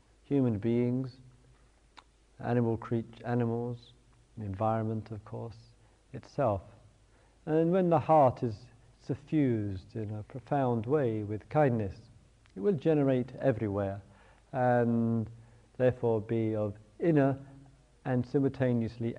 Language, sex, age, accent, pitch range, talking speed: English, male, 50-69, British, 105-125 Hz, 105 wpm